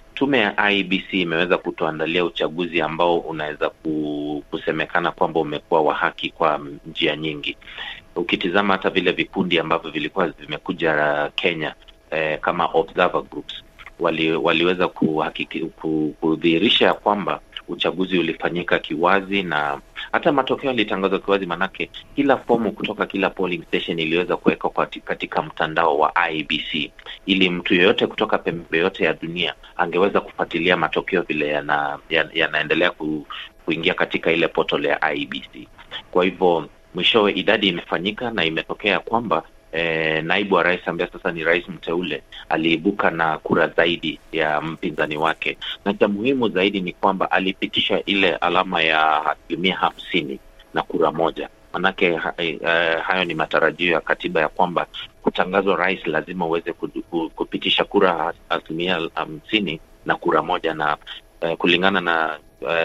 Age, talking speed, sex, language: 30-49, 130 wpm, male, Swahili